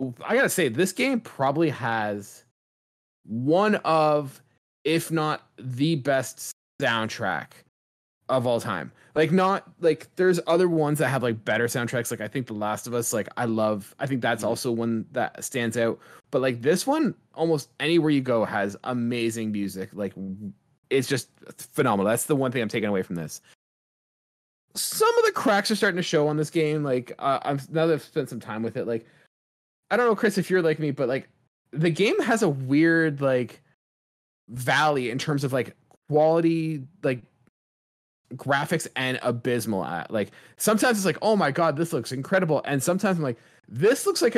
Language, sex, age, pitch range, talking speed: English, male, 20-39, 120-160 Hz, 185 wpm